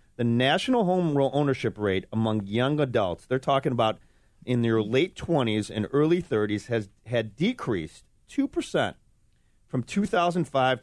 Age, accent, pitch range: 30-49, American, 110-145 Hz